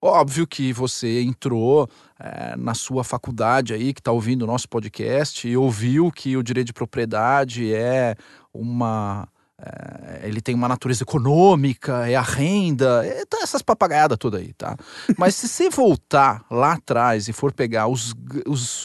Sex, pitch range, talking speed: male, 125-170 Hz, 160 wpm